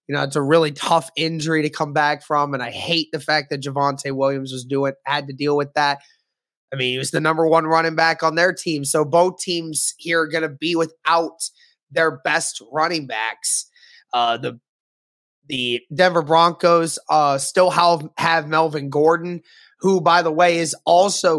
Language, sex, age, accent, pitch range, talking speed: English, male, 20-39, American, 150-170 Hz, 190 wpm